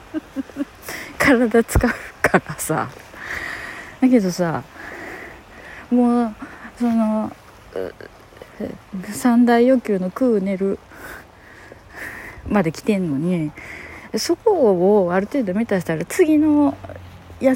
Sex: female